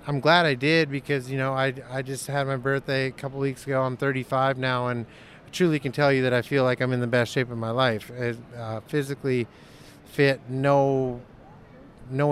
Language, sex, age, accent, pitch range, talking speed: English, male, 30-49, American, 125-140 Hz, 220 wpm